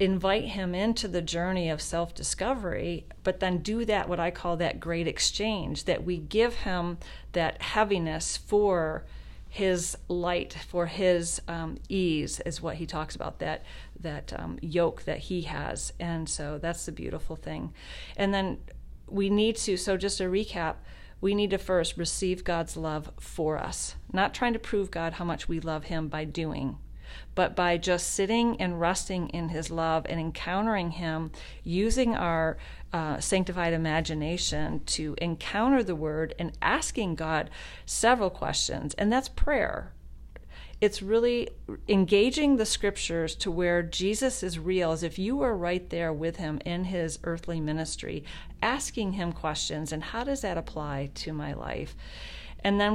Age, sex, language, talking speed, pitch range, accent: 40-59, female, English, 160 wpm, 160-195 Hz, American